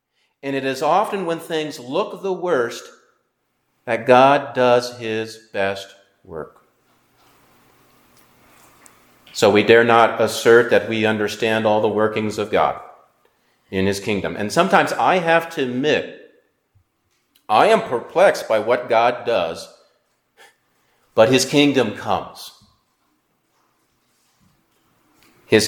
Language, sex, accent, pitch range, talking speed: English, male, American, 115-150 Hz, 115 wpm